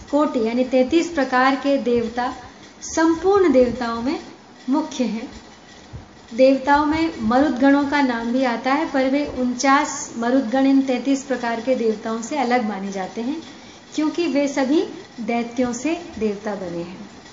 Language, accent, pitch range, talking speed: Hindi, native, 230-295 Hz, 140 wpm